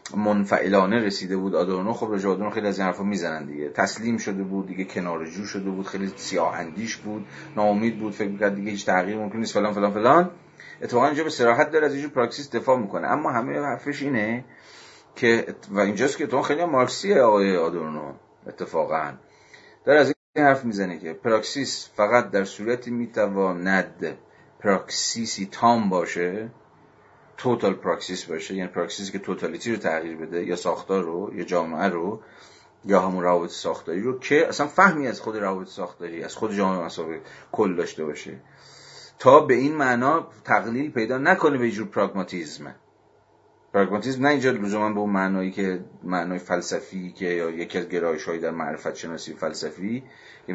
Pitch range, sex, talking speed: 90-115 Hz, male, 160 wpm